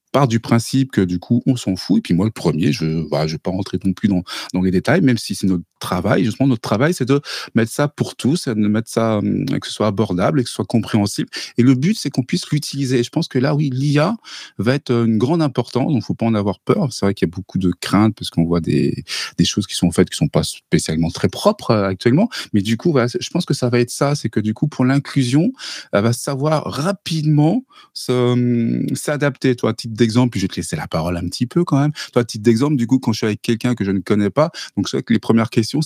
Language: French